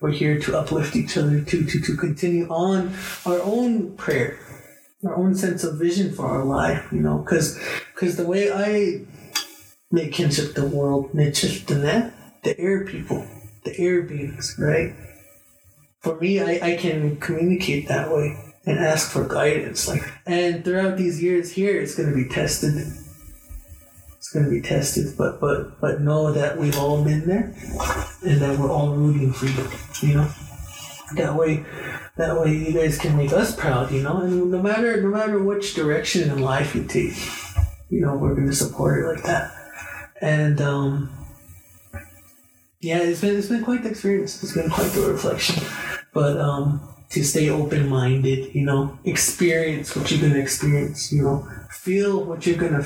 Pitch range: 140-175 Hz